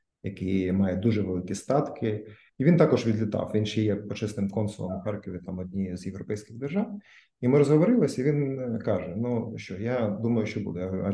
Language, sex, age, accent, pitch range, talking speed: Ukrainian, male, 30-49, native, 100-120 Hz, 170 wpm